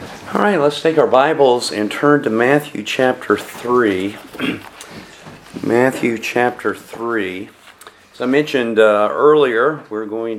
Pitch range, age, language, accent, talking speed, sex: 110-150 Hz, 40-59, English, American, 120 wpm, male